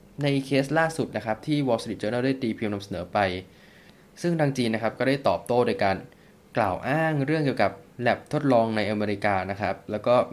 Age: 20-39